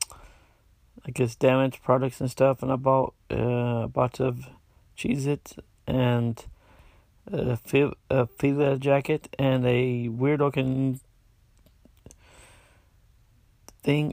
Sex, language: male, English